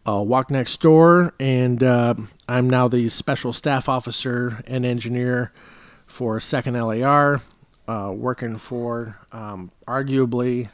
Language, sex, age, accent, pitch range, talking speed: English, male, 40-59, American, 105-125 Hz, 125 wpm